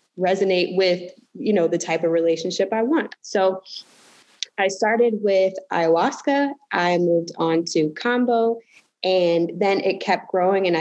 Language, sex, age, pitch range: English, female, 20-39, 170-220 Hz